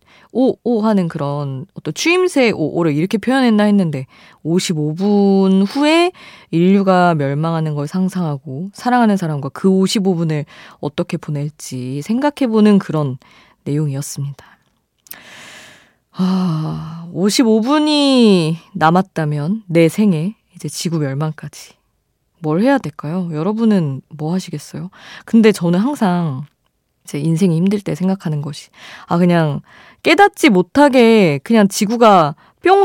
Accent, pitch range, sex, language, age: native, 155-220 Hz, female, Korean, 20-39